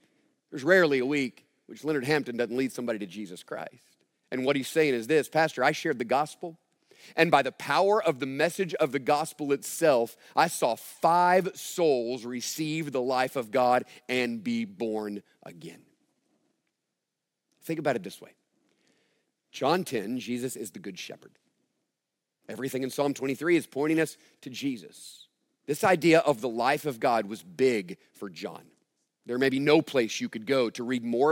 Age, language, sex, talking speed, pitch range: 40-59, English, male, 175 wpm, 130-185 Hz